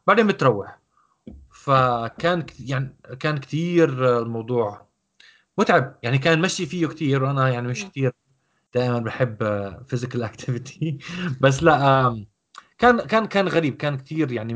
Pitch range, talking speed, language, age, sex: 125-165 Hz, 125 wpm, Arabic, 20-39, male